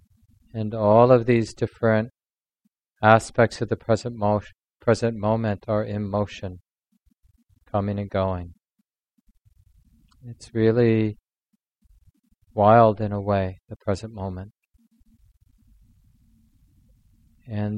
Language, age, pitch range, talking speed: English, 40-59, 100-110 Hz, 95 wpm